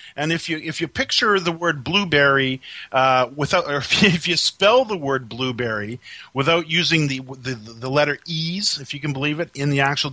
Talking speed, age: 195 wpm, 40-59